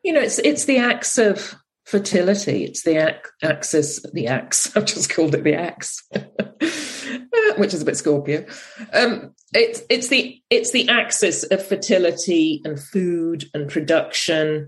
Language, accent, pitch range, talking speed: English, British, 145-215 Hz, 155 wpm